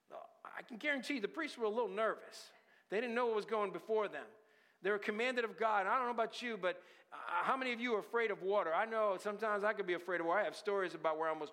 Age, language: 50-69, English